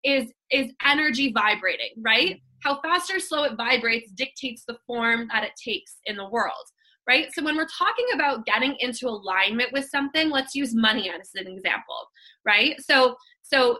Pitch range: 230-285 Hz